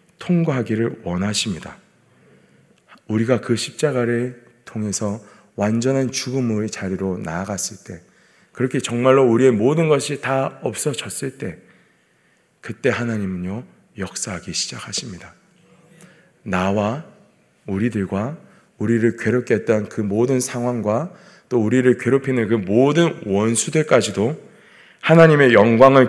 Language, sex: Korean, male